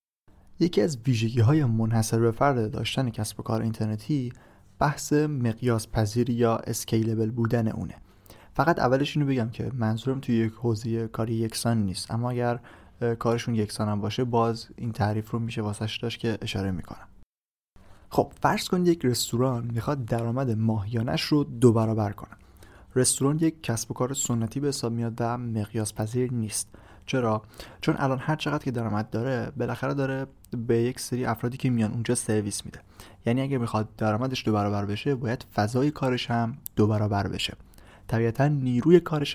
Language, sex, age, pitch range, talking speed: Persian, male, 30-49, 110-130 Hz, 160 wpm